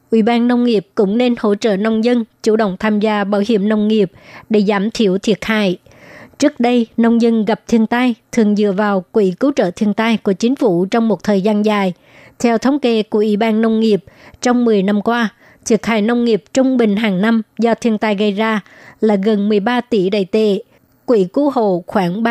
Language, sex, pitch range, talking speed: Vietnamese, male, 205-235 Hz, 220 wpm